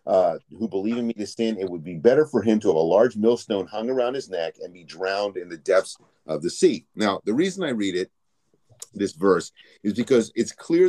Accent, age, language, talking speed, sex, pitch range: American, 40-59, English, 235 wpm, male, 105-150 Hz